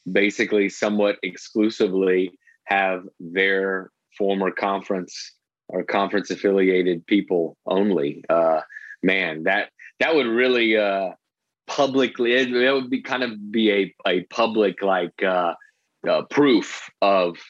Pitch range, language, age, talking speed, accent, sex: 95-120 Hz, English, 30-49, 120 wpm, American, male